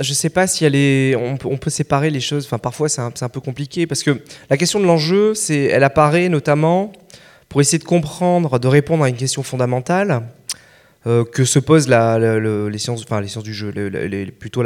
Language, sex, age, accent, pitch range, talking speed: French, male, 20-39, French, 120-160 Hz, 225 wpm